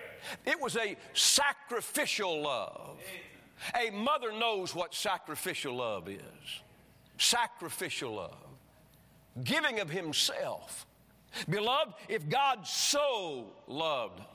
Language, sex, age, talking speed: English, male, 50-69, 90 wpm